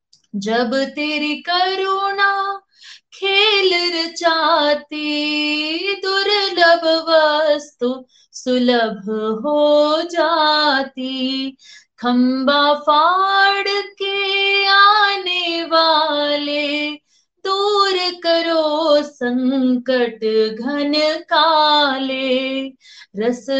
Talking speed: 45 wpm